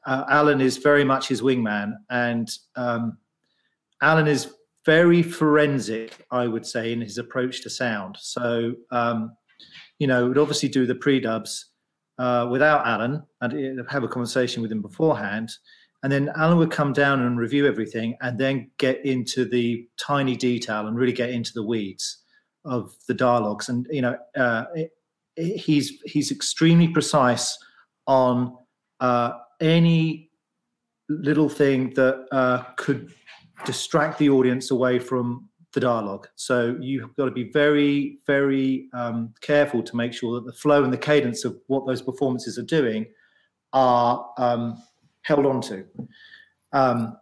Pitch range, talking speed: 120-145 Hz, 150 wpm